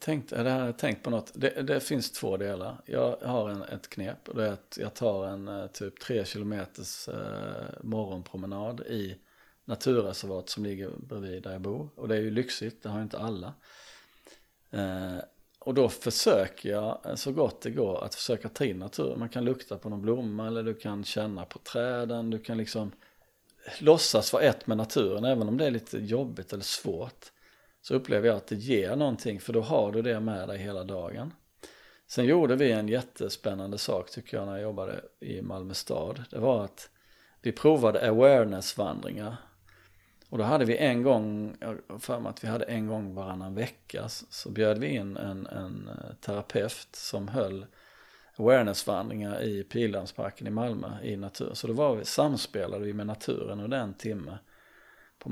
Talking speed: 175 wpm